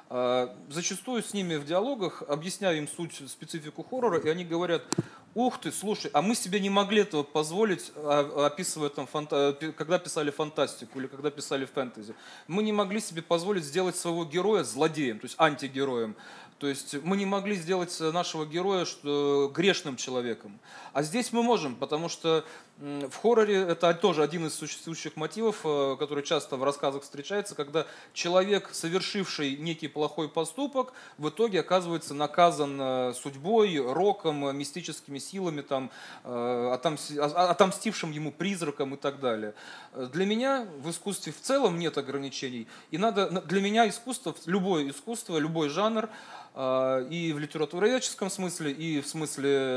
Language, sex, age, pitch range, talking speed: Russian, male, 30-49, 145-190 Hz, 140 wpm